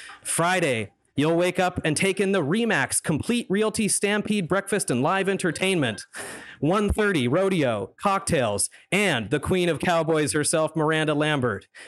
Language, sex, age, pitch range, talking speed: English, male, 30-49, 130-190 Hz, 135 wpm